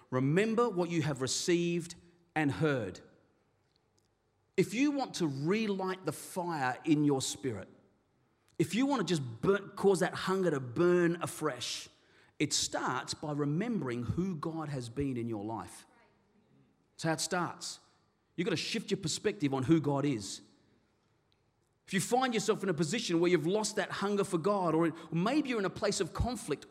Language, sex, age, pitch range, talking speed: English, male, 40-59, 150-200 Hz, 170 wpm